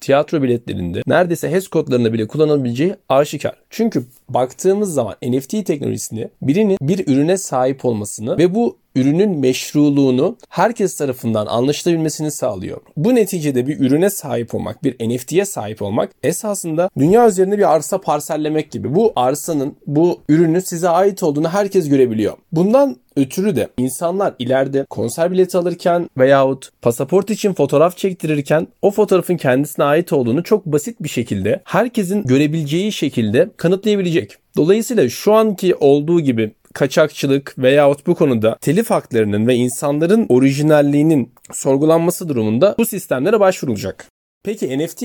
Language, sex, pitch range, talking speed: Turkish, male, 130-190 Hz, 130 wpm